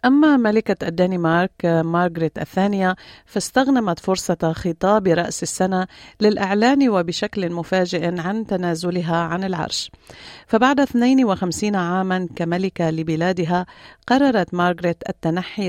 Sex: female